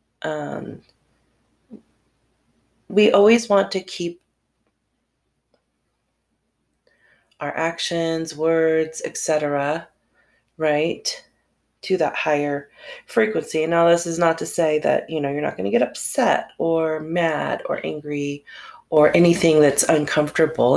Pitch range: 145-175 Hz